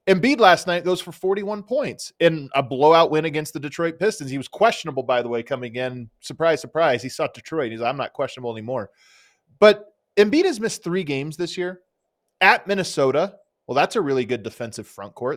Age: 30-49